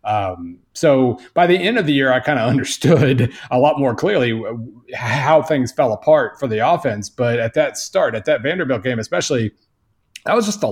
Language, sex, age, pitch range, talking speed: English, male, 30-49, 115-145 Hz, 200 wpm